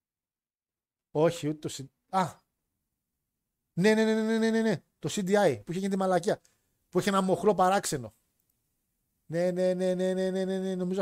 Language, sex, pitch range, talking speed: Greek, male, 130-185 Hz, 170 wpm